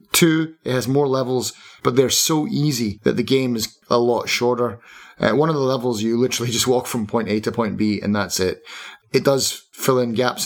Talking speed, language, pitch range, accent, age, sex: 220 wpm, English, 105-130 Hz, British, 30-49, male